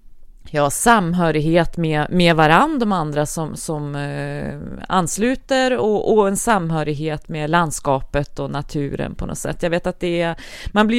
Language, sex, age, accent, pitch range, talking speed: English, female, 30-49, Swedish, 160-215 Hz, 165 wpm